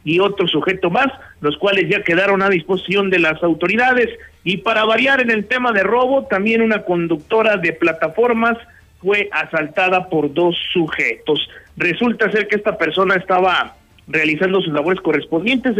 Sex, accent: male, Mexican